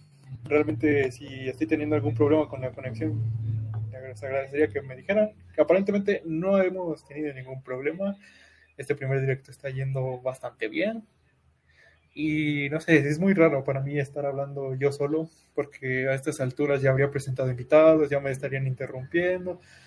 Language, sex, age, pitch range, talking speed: Spanish, male, 20-39, 135-165 Hz, 155 wpm